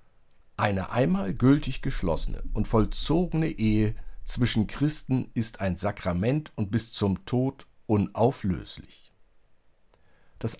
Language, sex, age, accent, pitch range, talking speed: German, male, 50-69, German, 95-135 Hz, 100 wpm